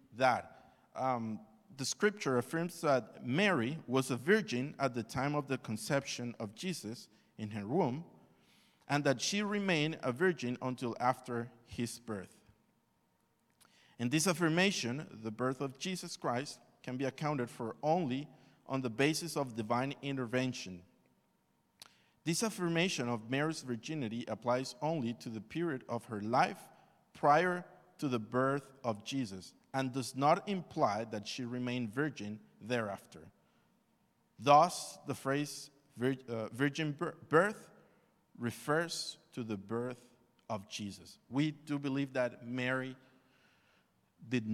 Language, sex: English, male